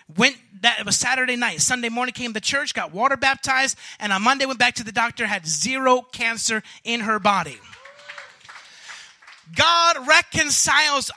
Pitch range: 230-285 Hz